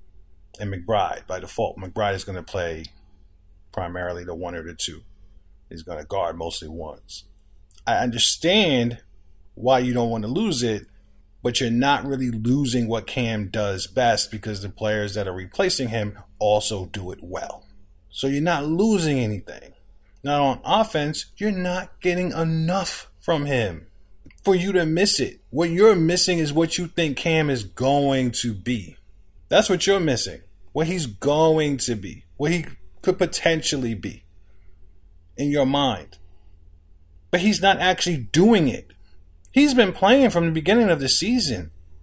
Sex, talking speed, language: male, 160 wpm, English